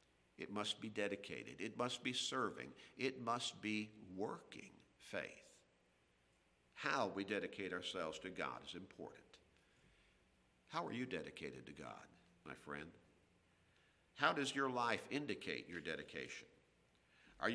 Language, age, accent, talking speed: English, 50-69, American, 125 wpm